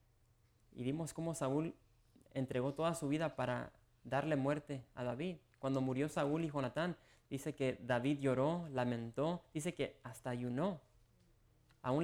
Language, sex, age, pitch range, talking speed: English, male, 30-49, 120-145 Hz, 140 wpm